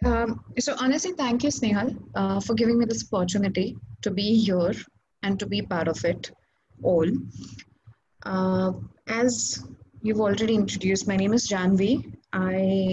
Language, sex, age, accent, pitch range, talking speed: English, female, 30-49, Indian, 170-215 Hz, 150 wpm